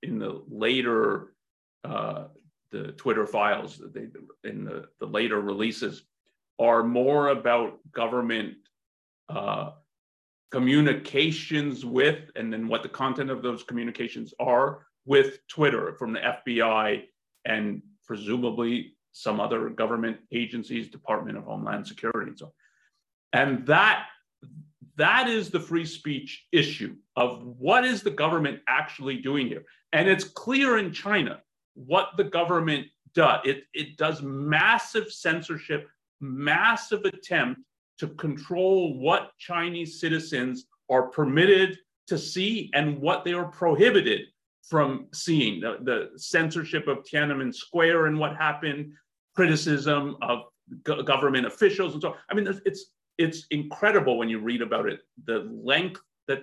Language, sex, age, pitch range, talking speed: English, male, 40-59, 125-180 Hz, 130 wpm